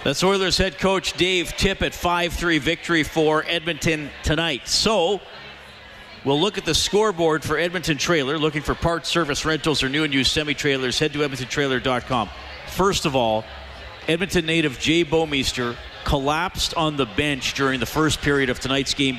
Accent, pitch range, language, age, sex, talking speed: American, 110-145 Hz, English, 40-59, male, 165 wpm